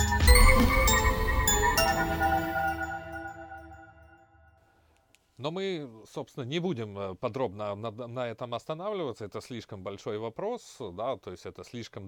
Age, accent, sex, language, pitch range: 30-49, native, male, Russian, 90-115 Hz